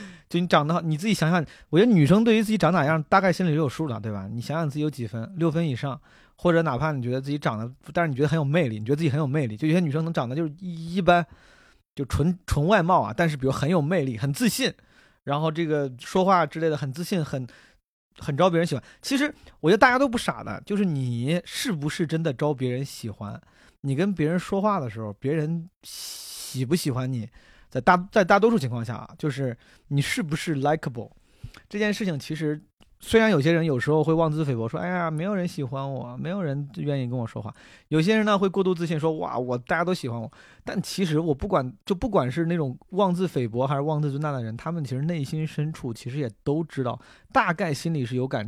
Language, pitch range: Chinese, 130-175 Hz